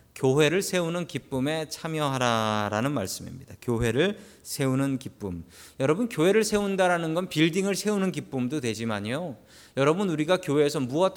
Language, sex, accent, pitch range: Korean, male, native, 115-175 Hz